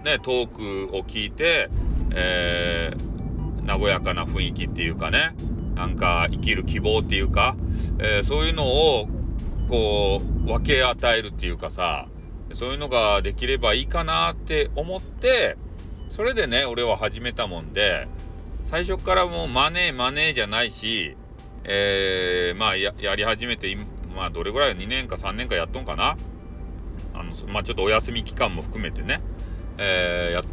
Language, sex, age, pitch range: Japanese, male, 40-59, 85-130 Hz